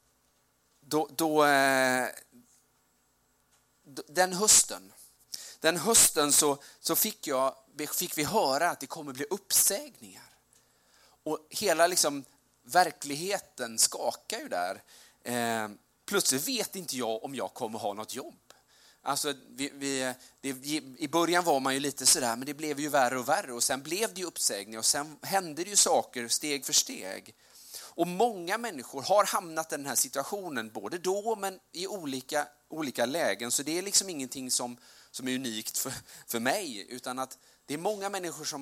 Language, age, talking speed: Swedish, 30-49, 160 wpm